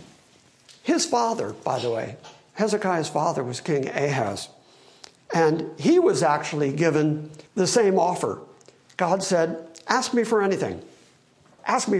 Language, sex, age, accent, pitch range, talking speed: English, male, 60-79, American, 165-255 Hz, 130 wpm